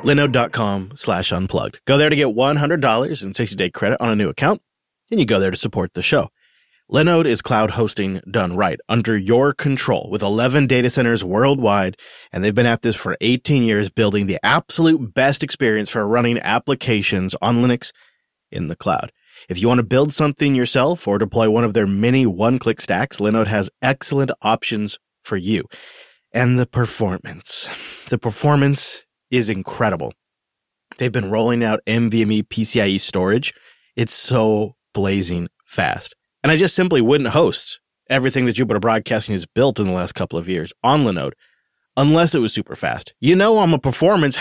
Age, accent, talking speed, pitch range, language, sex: 30-49, American, 170 wpm, 105-135 Hz, English, male